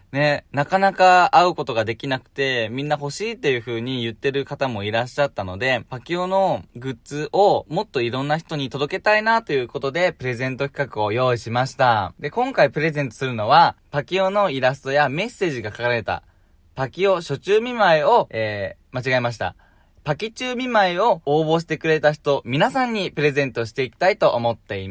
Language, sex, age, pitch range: Japanese, male, 20-39, 115-190 Hz